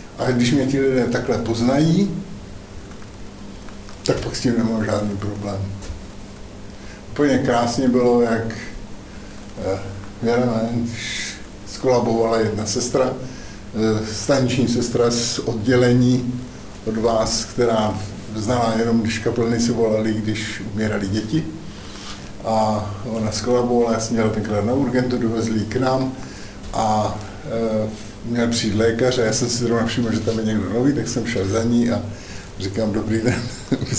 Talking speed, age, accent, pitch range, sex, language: 135 wpm, 50-69, native, 105-125 Hz, male, Czech